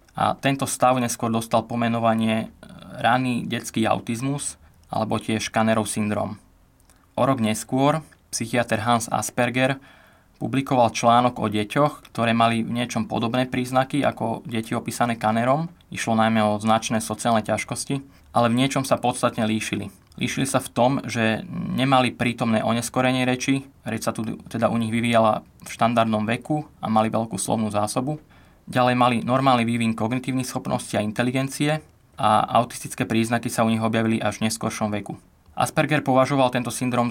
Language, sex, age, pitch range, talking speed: Slovak, male, 20-39, 110-125 Hz, 145 wpm